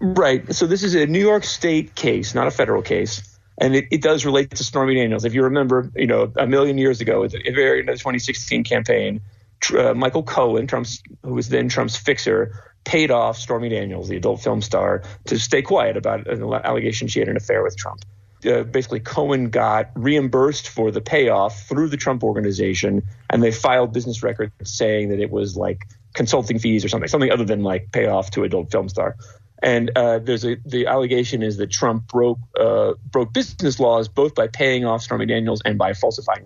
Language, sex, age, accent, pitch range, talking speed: English, male, 30-49, American, 110-140 Hz, 200 wpm